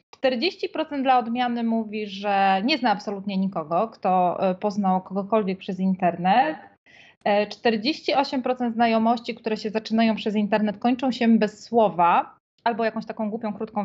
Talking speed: 125 wpm